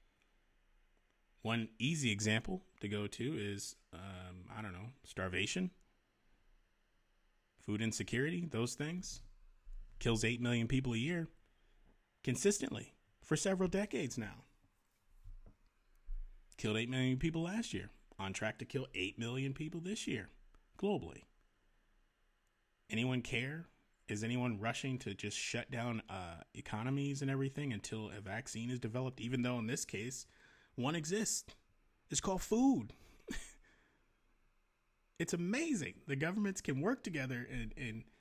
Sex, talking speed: male, 125 wpm